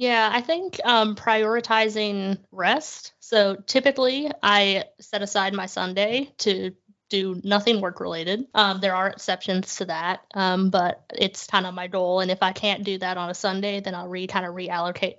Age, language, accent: 20-39, English, American